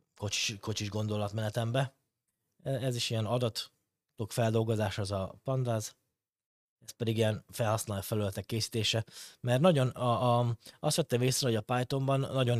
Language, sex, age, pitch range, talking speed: Hungarian, male, 20-39, 110-125 Hz, 140 wpm